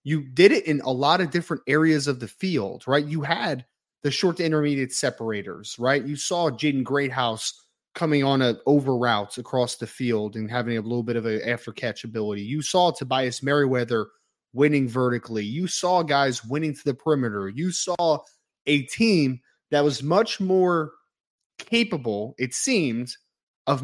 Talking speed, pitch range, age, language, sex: 170 wpm, 125-160 Hz, 20-39, English, male